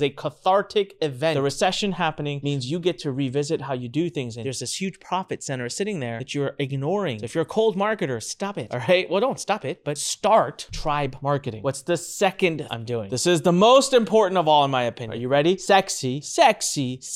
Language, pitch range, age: English, 145-225 Hz, 30-49